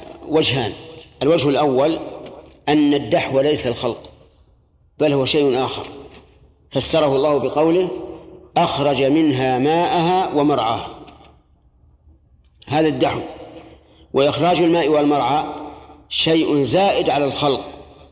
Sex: male